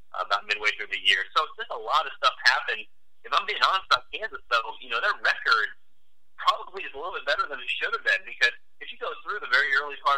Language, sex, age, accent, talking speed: English, male, 40-59, American, 265 wpm